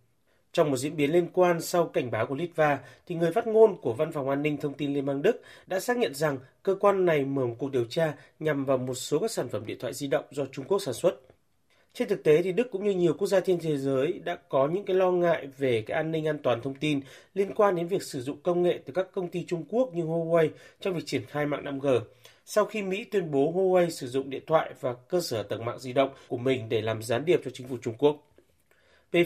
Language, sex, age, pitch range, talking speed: Vietnamese, male, 30-49, 140-185 Hz, 270 wpm